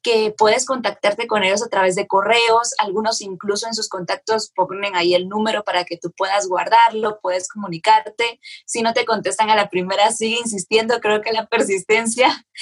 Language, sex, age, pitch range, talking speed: Spanish, female, 20-39, 200-245 Hz, 180 wpm